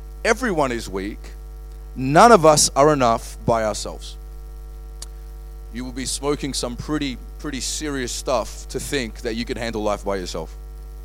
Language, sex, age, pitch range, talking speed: English, male, 30-49, 75-110 Hz, 150 wpm